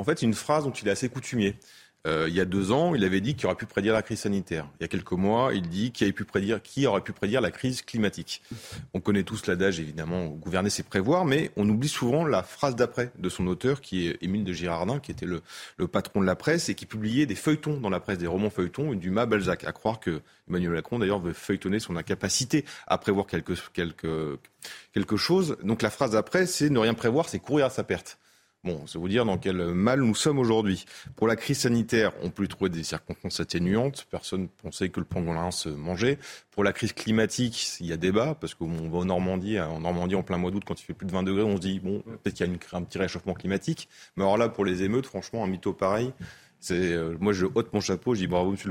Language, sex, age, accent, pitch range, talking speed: French, male, 30-49, French, 90-115 Hz, 250 wpm